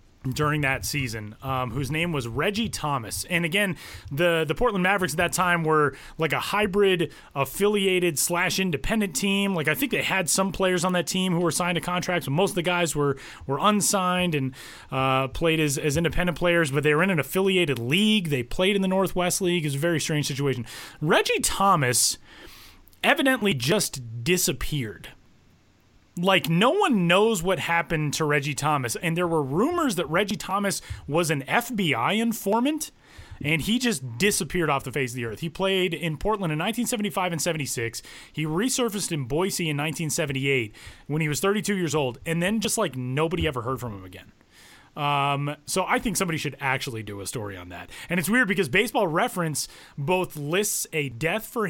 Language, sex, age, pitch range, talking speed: English, male, 30-49, 140-190 Hz, 190 wpm